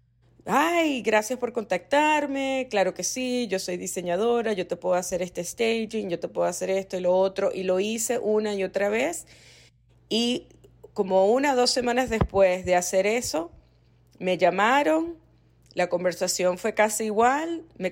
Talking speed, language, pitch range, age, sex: 165 wpm, Spanish, 170-220 Hz, 30-49, female